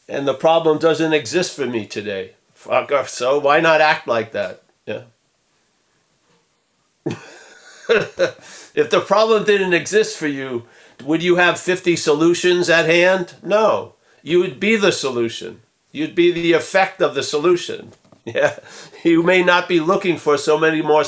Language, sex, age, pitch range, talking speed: English, male, 50-69, 155-195 Hz, 155 wpm